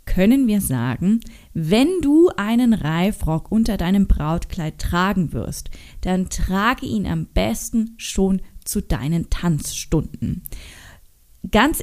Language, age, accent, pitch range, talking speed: German, 20-39, German, 170-225 Hz, 110 wpm